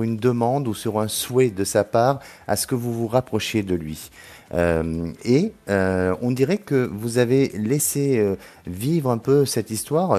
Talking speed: 190 wpm